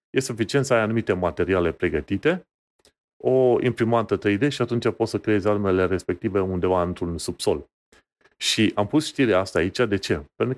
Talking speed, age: 165 wpm, 30-49